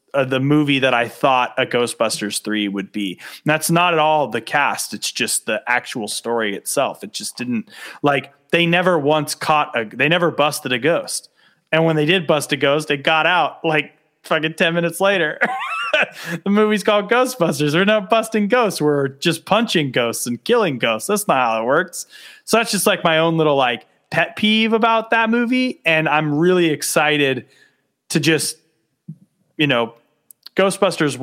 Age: 30-49